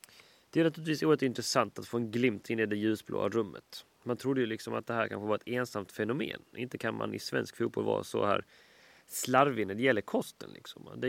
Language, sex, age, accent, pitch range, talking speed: Swedish, male, 30-49, native, 115-155 Hz, 225 wpm